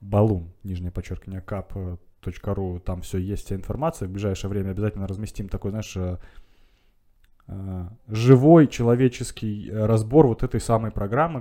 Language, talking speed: Russian, 120 wpm